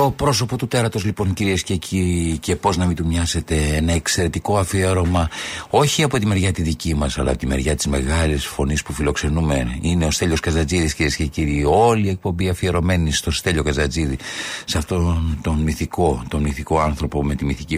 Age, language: 50-69, Greek